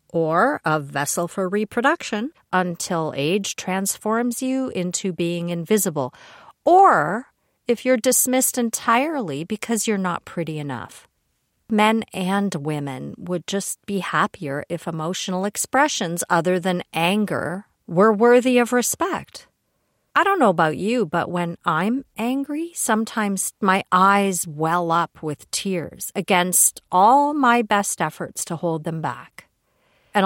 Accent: American